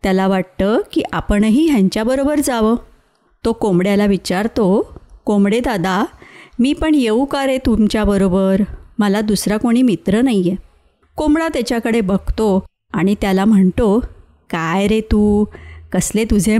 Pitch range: 190-235 Hz